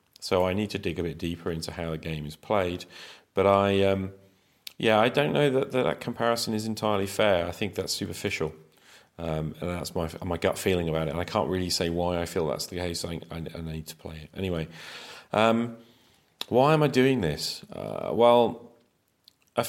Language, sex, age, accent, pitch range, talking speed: English, male, 40-59, British, 85-110 Hz, 210 wpm